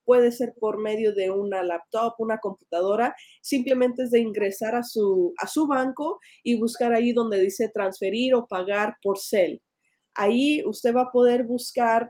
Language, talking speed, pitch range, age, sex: Spanish, 170 wpm, 205-250 Hz, 20-39, female